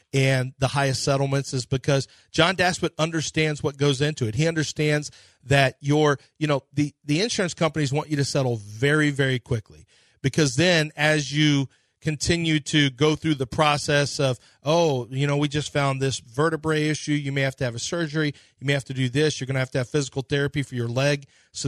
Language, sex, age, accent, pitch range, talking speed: English, male, 40-59, American, 125-150 Hz, 210 wpm